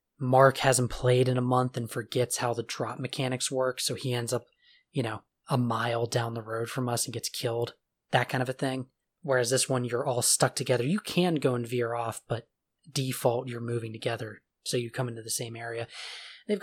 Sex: male